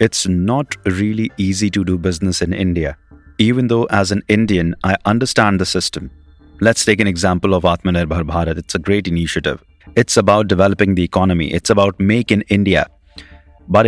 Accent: Indian